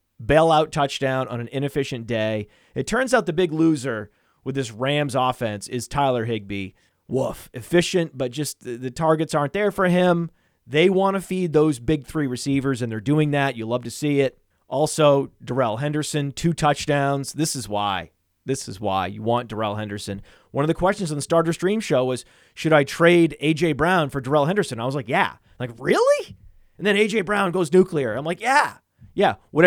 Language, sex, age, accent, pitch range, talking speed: English, male, 30-49, American, 120-165 Hz, 200 wpm